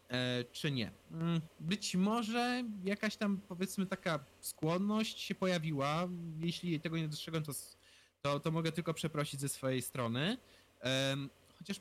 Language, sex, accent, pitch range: Polish, male, native, 140-190 Hz